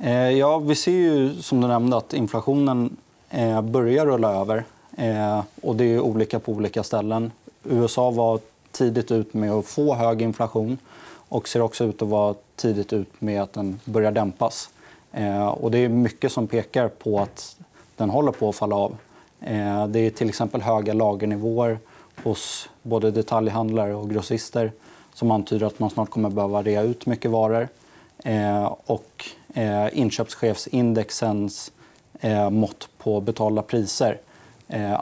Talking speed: 150 wpm